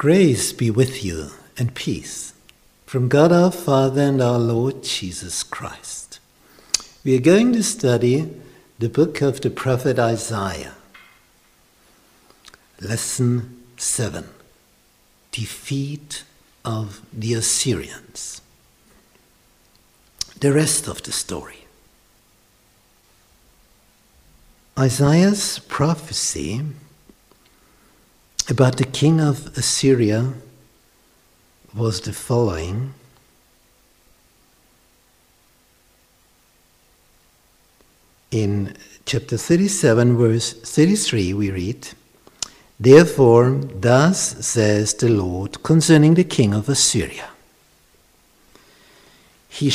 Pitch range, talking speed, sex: 110-140 Hz, 80 wpm, male